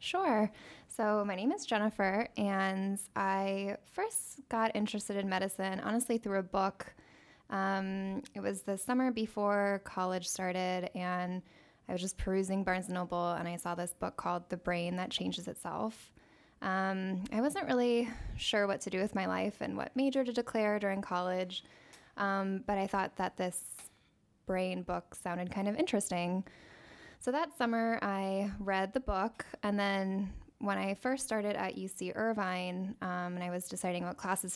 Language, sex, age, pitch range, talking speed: English, female, 10-29, 180-210 Hz, 165 wpm